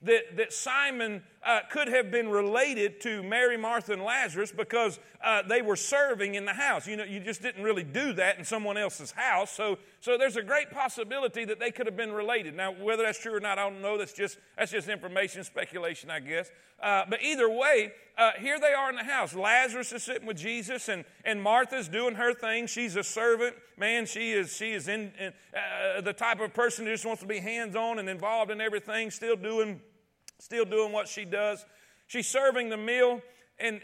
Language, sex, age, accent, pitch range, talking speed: English, male, 40-59, American, 205-245 Hz, 215 wpm